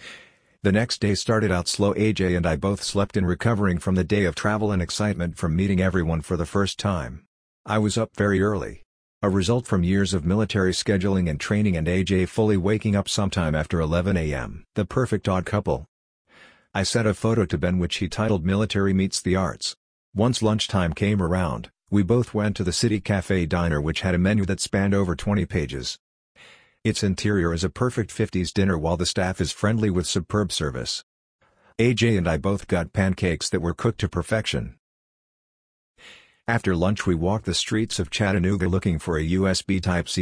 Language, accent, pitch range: English, American, 90-105 Hz